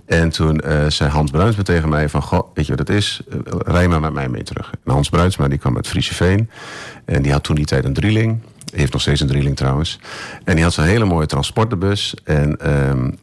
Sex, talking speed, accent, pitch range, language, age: male, 240 wpm, Dutch, 75-100 Hz, Dutch, 50-69